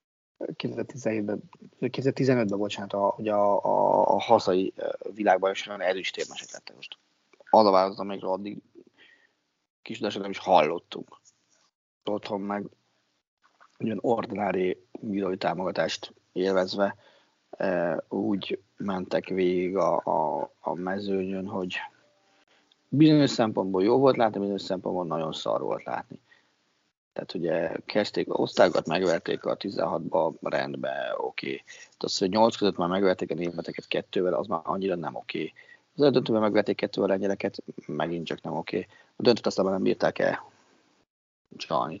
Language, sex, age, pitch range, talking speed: Hungarian, male, 30-49, 95-115 Hz, 130 wpm